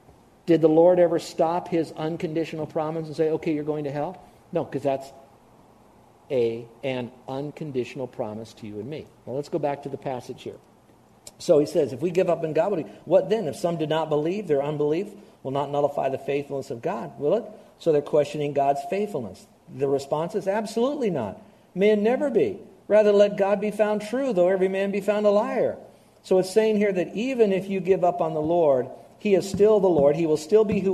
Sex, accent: male, American